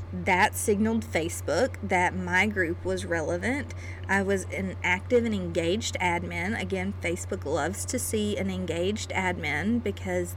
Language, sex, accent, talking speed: English, female, American, 140 wpm